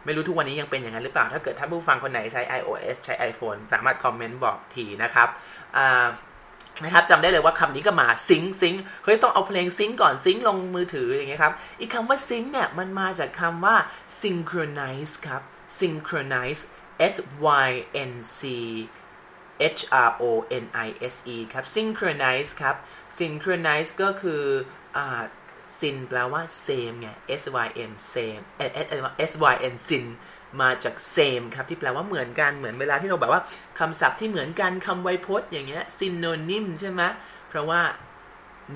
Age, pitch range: 20-39, 130-185 Hz